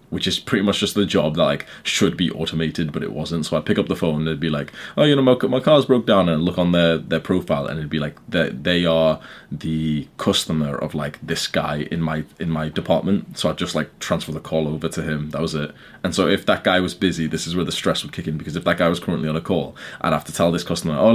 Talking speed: 290 wpm